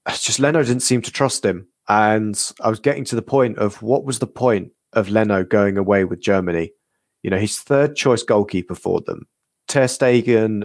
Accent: British